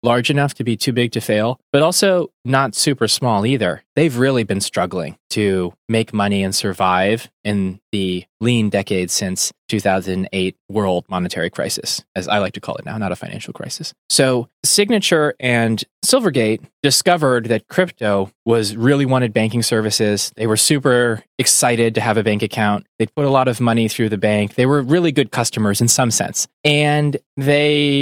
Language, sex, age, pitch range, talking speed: English, male, 20-39, 110-140 Hz, 180 wpm